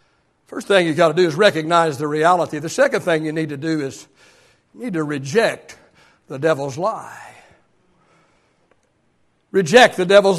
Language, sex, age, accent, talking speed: English, male, 60-79, American, 160 wpm